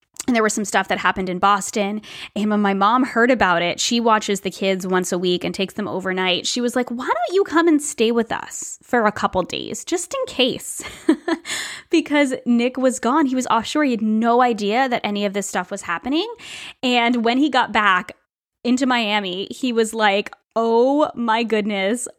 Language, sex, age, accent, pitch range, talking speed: English, female, 10-29, American, 200-265 Hz, 205 wpm